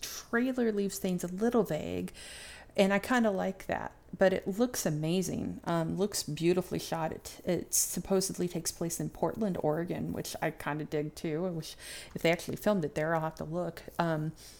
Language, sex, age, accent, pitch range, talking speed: English, female, 30-49, American, 160-190 Hz, 195 wpm